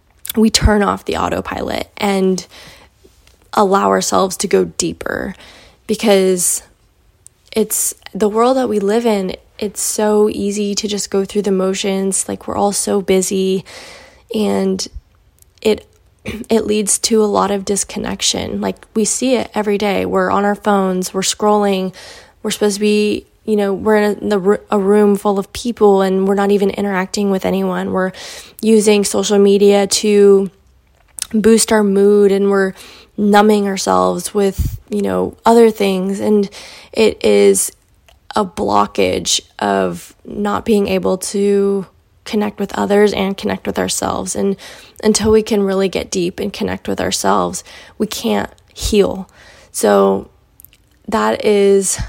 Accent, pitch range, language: American, 185-210 Hz, English